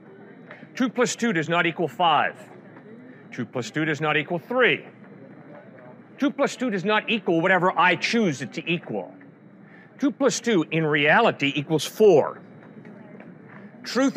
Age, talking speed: 50-69, 145 wpm